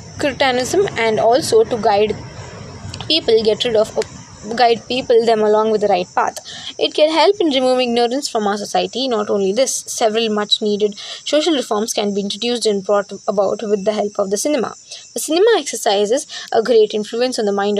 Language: English